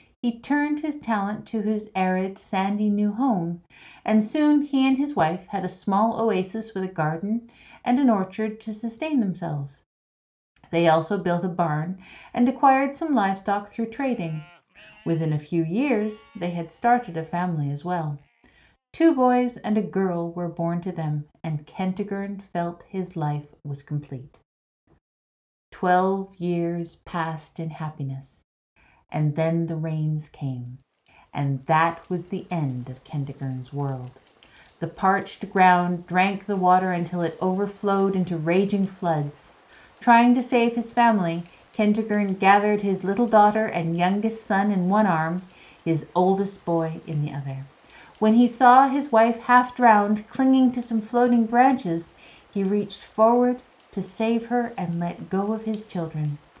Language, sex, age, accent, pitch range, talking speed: English, female, 50-69, American, 165-220 Hz, 150 wpm